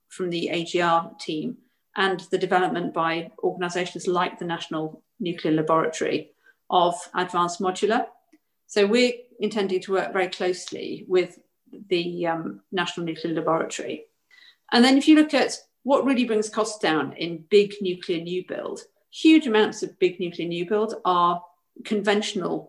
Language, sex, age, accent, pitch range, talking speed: English, female, 40-59, British, 175-230 Hz, 145 wpm